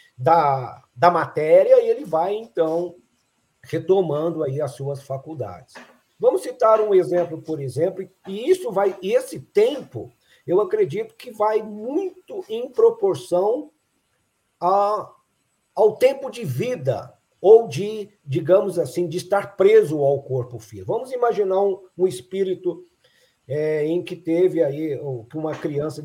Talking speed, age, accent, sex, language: 135 wpm, 50-69, Brazilian, male, Portuguese